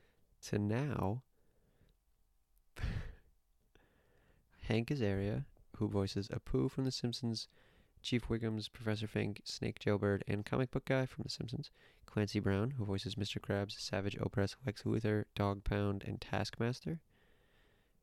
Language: English